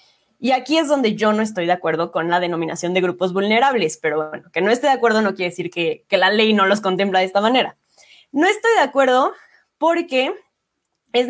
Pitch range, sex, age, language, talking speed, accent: 185-235 Hz, female, 20-39, Spanish, 220 wpm, Mexican